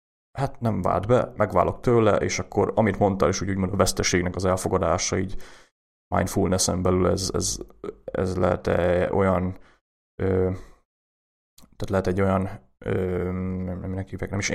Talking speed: 150 wpm